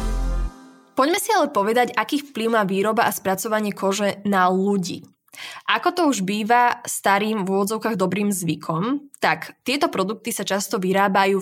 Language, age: Slovak, 20-39